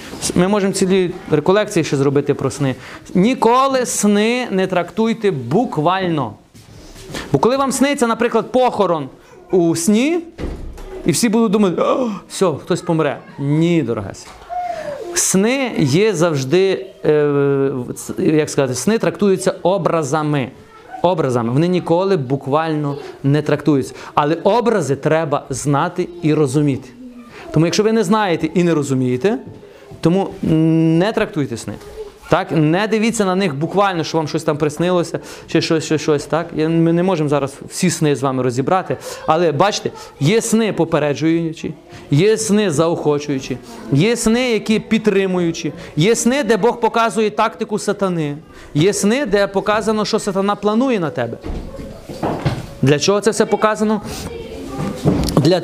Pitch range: 150-215 Hz